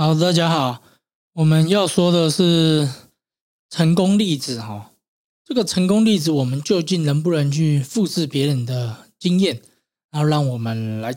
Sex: male